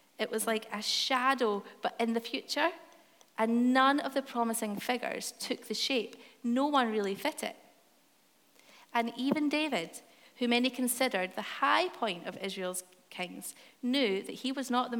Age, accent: 30-49, British